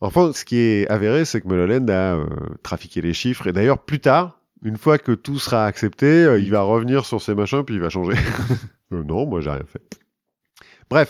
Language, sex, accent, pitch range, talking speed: French, male, French, 100-155 Hz, 220 wpm